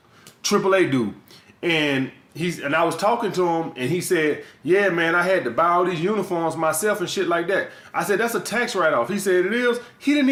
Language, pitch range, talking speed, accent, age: English, 185-225 Hz, 235 wpm, American, 20-39